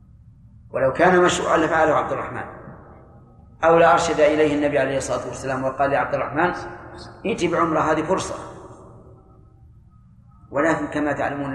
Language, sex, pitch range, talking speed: Arabic, male, 135-155 Hz, 130 wpm